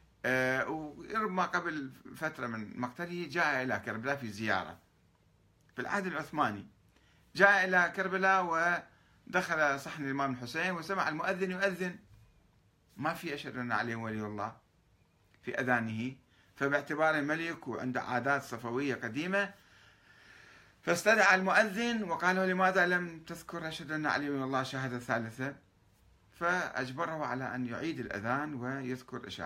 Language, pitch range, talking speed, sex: Arabic, 110-165 Hz, 120 wpm, male